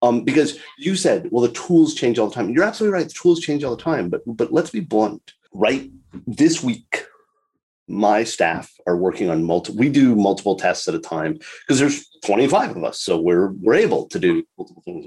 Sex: male